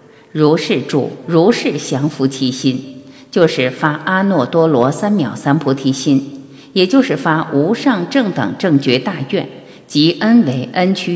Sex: female